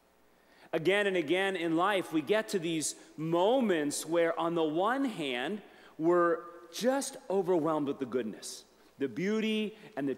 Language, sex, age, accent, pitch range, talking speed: English, male, 40-59, American, 140-195 Hz, 145 wpm